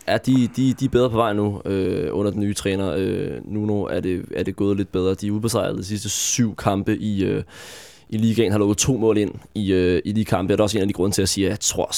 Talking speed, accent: 285 wpm, native